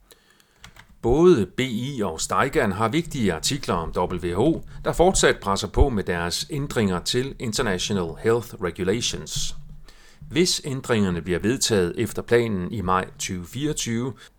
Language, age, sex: Danish, 40-59, male